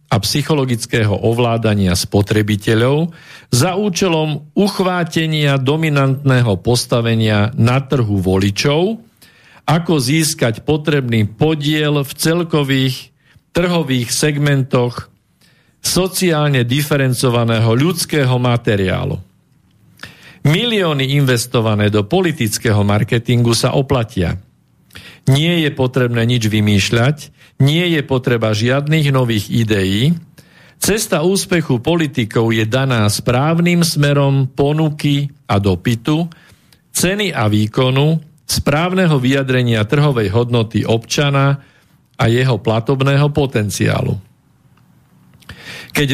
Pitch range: 115-155 Hz